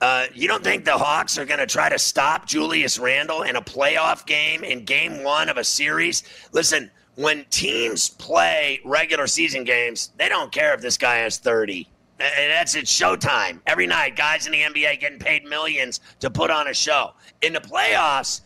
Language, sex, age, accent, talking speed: English, male, 30-49, American, 195 wpm